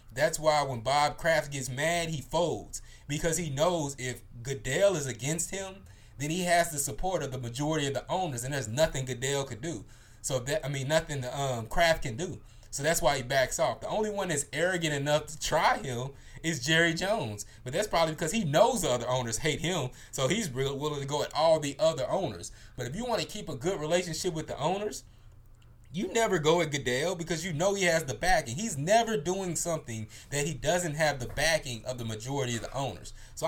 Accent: American